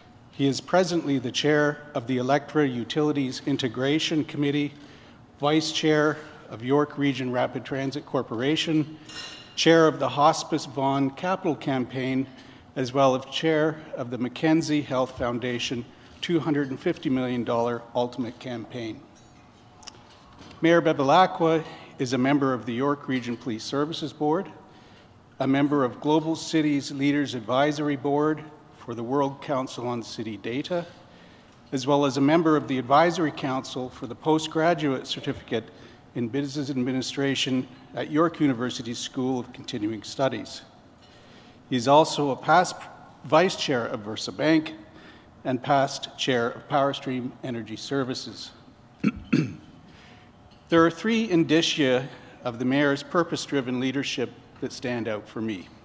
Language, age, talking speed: English, 50-69, 125 wpm